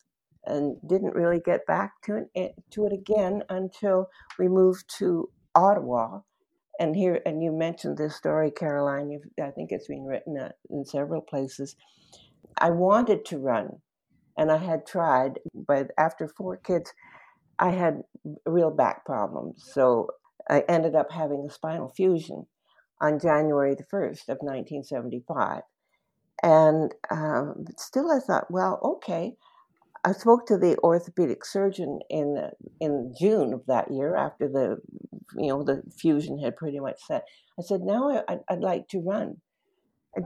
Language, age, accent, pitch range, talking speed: English, 60-79, American, 155-210 Hz, 150 wpm